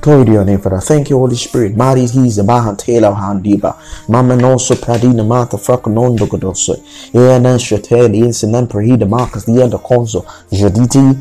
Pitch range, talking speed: 105-125 Hz, 150 wpm